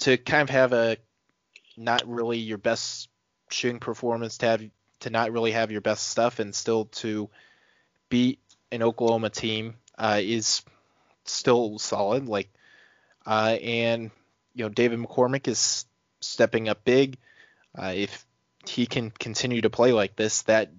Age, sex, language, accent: 20-39, male, English, American